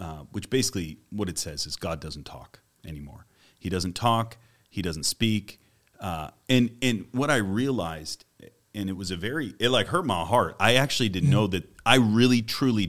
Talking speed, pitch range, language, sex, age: 190 wpm, 90-120 Hz, English, male, 30-49